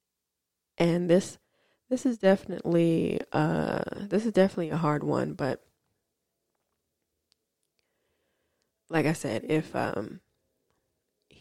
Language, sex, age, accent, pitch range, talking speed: English, female, 20-39, American, 160-195 Hz, 95 wpm